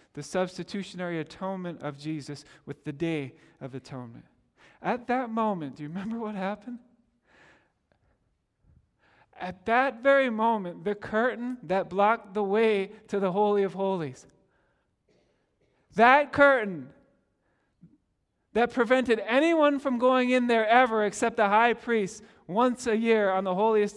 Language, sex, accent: English, male, American